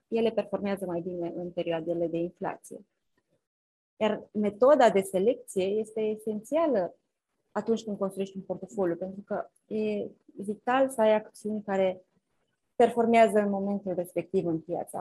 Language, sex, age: Romanian, female, 20-39